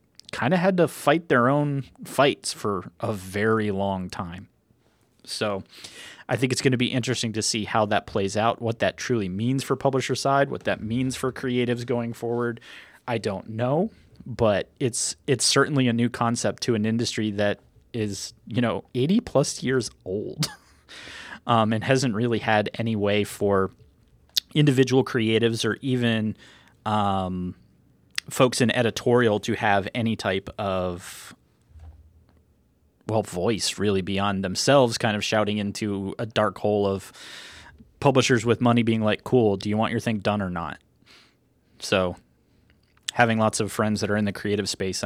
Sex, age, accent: male, 30-49, American